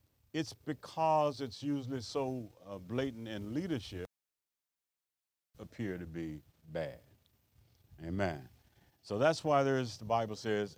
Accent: American